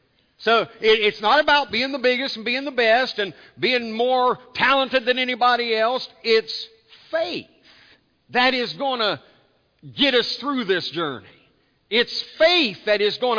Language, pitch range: English, 190-255 Hz